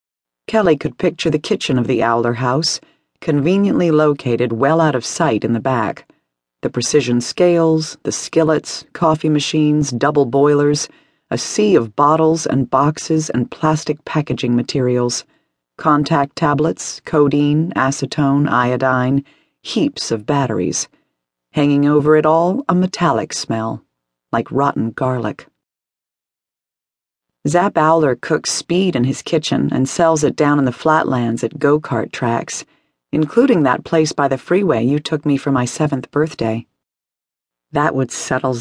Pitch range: 125-155 Hz